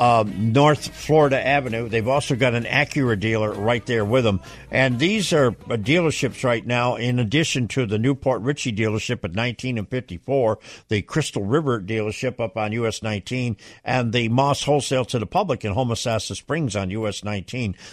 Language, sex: English, male